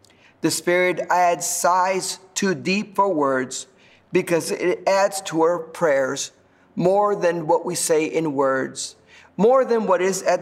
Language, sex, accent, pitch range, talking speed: English, male, American, 155-195 Hz, 150 wpm